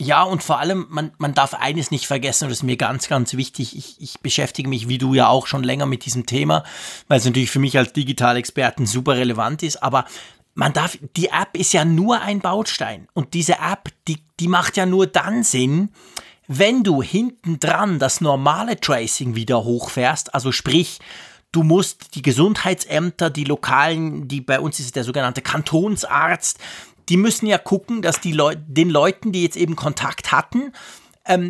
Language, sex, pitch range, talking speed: German, male, 135-180 Hz, 190 wpm